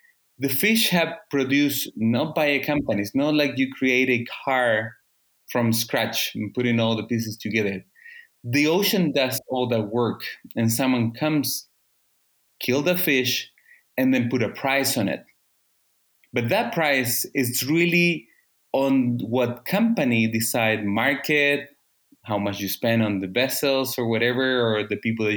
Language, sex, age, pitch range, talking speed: English, male, 30-49, 115-150 Hz, 155 wpm